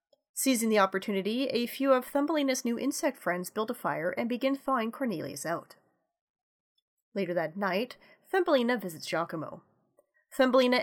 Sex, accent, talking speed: female, American, 140 wpm